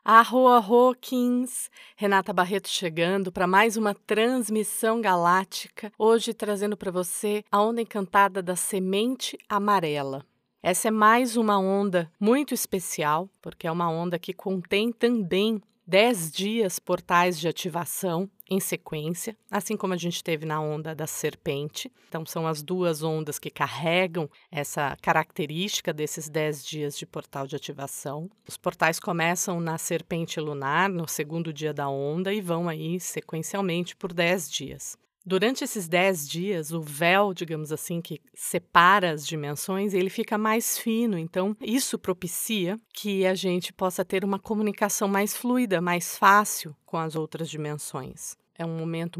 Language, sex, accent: Portuguese, female, Brazilian